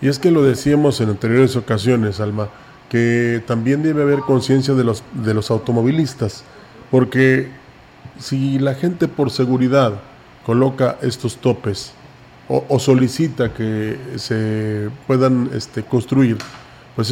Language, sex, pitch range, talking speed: Spanish, male, 120-140 Hz, 130 wpm